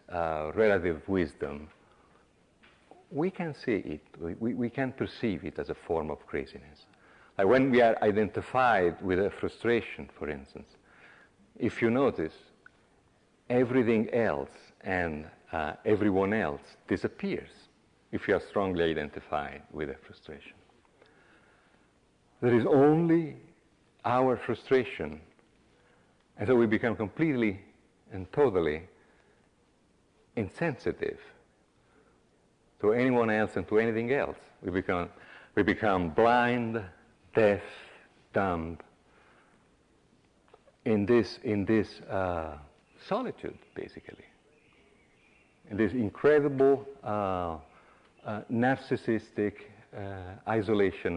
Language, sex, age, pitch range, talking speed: English, male, 50-69, 95-125 Hz, 100 wpm